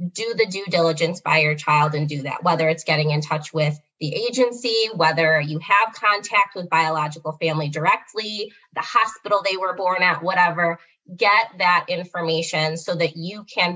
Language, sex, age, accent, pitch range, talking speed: English, female, 20-39, American, 165-200 Hz, 175 wpm